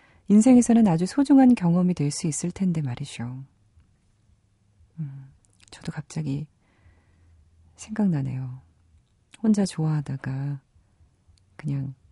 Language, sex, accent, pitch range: Korean, female, native, 115-185 Hz